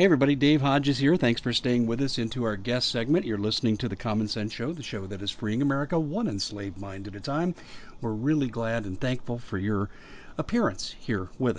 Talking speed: 225 wpm